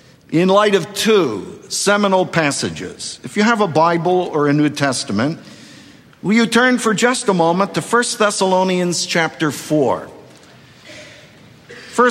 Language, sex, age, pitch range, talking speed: English, male, 50-69, 165-220 Hz, 135 wpm